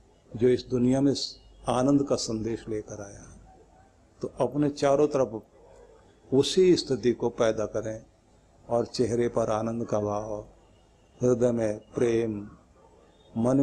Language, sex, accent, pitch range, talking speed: Hindi, male, native, 105-150 Hz, 125 wpm